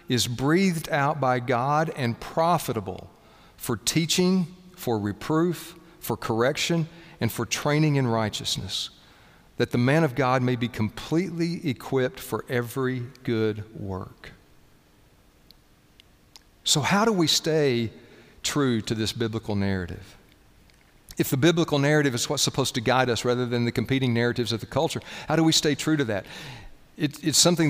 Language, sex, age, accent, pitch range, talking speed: English, male, 50-69, American, 120-155 Hz, 145 wpm